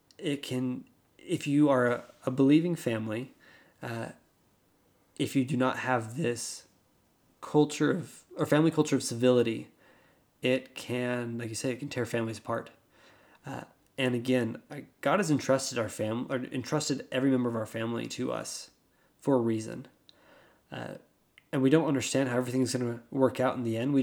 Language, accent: English, American